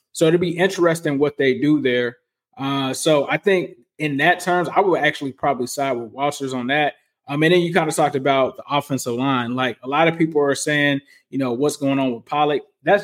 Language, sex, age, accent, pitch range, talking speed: English, male, 20-39, American, 140-165 Hz, 235 wpm